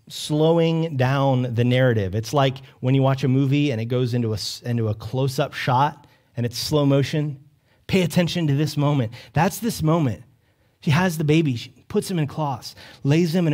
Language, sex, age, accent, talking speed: English, male, 30-49, American, 190 wpm